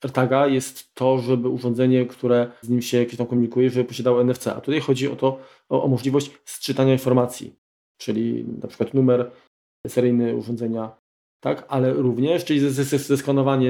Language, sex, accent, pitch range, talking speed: Polish, male, native, 125-135 Hz, 150 wpm